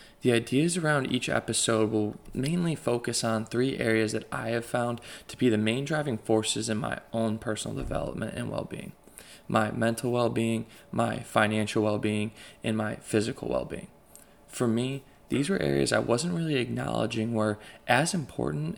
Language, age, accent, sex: English, 20-39, American, male